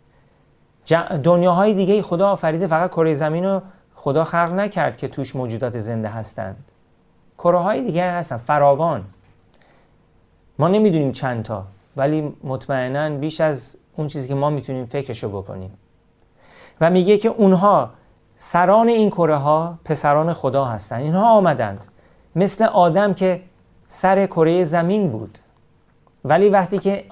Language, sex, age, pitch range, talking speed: Persian, male, 40-59, 130-175 Hz, 130 wpm